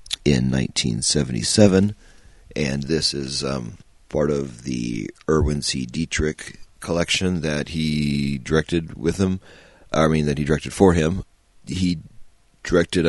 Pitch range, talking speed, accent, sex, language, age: 65-80 Hz, 125 wpm, American, male, English, 40-59